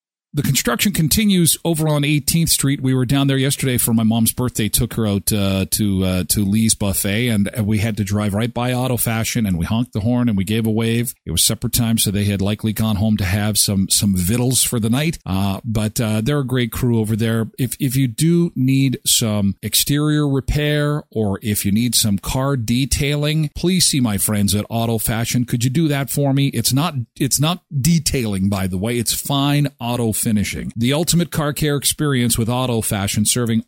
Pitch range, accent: 110-140 Hz, American